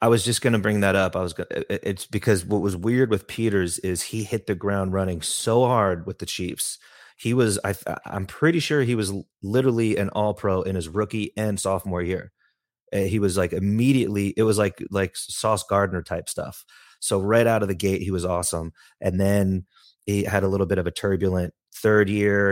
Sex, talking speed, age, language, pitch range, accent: male, 210 wpm, 30-49, English, 90-105 Hz, American